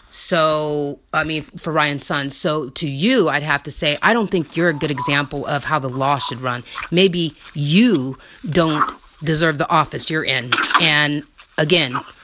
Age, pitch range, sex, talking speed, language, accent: 30-49, 145-170 Hz, female, 175 wpm, English, American